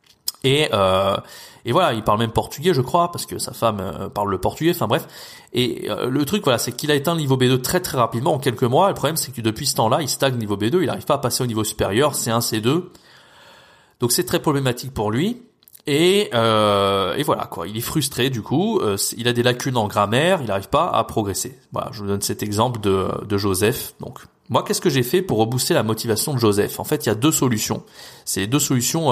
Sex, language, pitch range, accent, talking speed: male, French, 110-145 Hz, French, 240 wpm